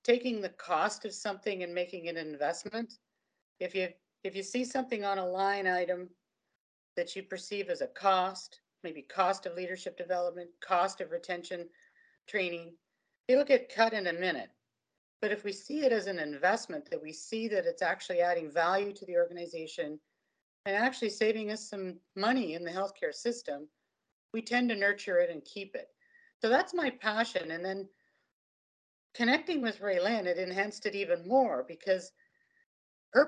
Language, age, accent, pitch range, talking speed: English, 50-69, American, 175-230 Hz, 170 wpm